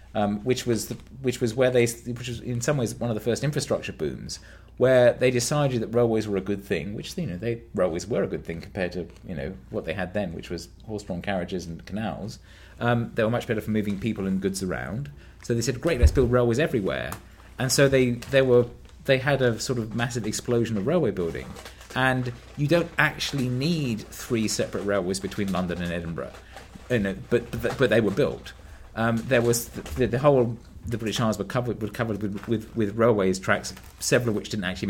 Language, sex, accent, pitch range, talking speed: English, male, British, 95-120 Hz, 225 wpm